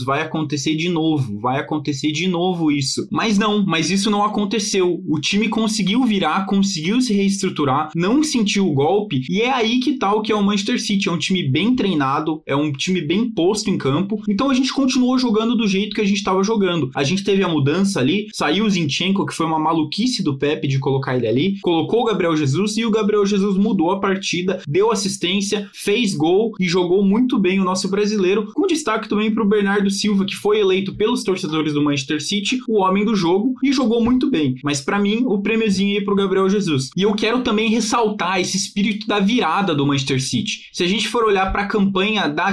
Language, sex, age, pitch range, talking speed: Portuguese, male, 20-39, 170-220 Hz, 215 wpm